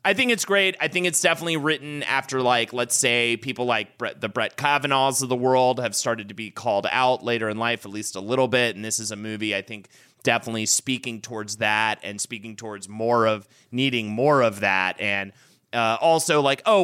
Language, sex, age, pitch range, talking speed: English, male, 30-49, 105-140 Hz, 215 wpm